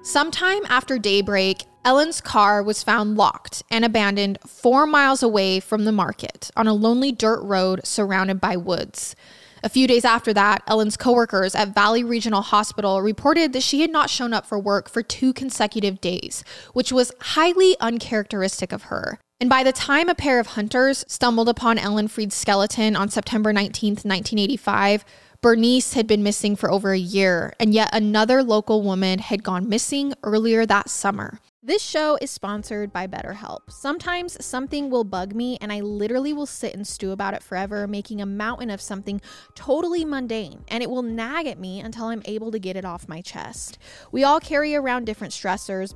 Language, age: English, 20-39